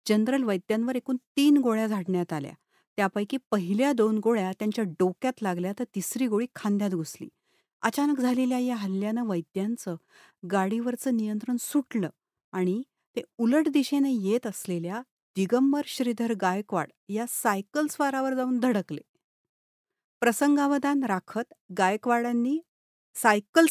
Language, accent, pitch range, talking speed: Marathi, native, 195-255 Hz, 95 wpm